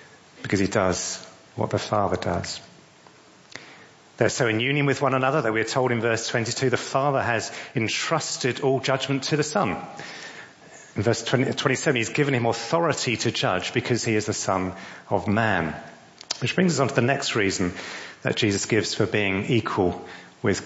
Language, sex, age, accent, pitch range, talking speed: English, male, 40-59, British, 100-135 Hz, 175 wpm